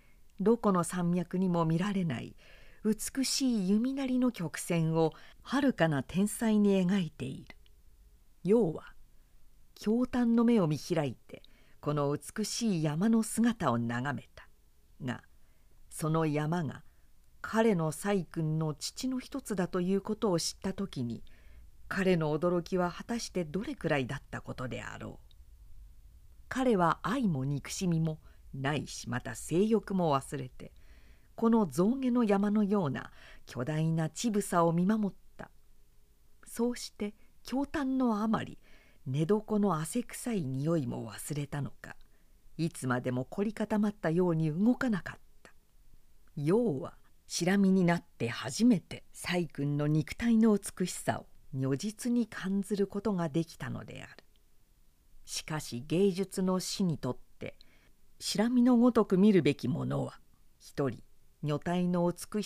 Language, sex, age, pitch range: Japanese, female, 50-69, 145-215 Hz